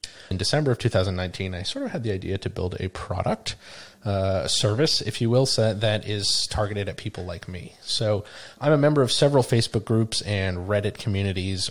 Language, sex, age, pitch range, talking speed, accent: English, male, 30-49, 95-115 Hz, 195 wpm, American